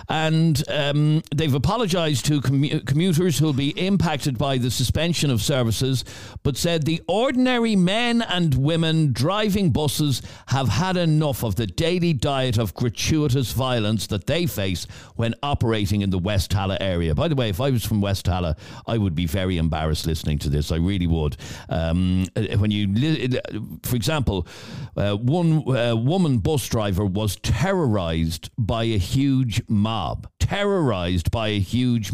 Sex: male